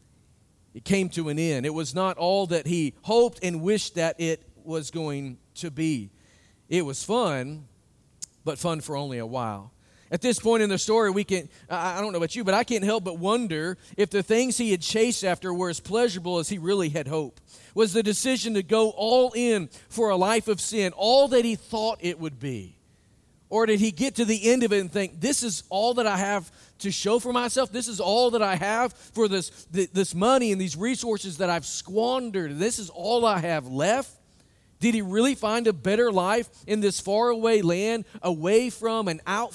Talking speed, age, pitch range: 215 wpm, 40-59, 165-225 Hz